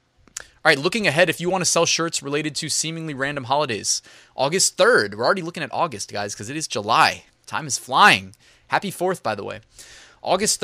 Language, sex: English, male